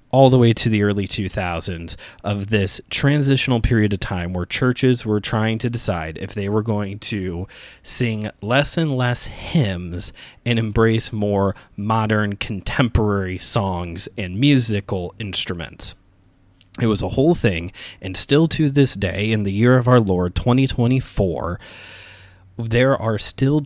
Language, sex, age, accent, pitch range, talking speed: English, male, 20-39, American, 95-120 Hz, 145 wpm